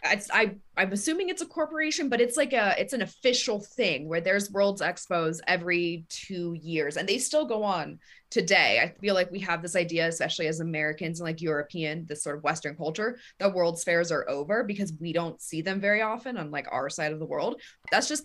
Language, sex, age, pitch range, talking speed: English, female, 20-39, 165-205 Hz, 215 wpm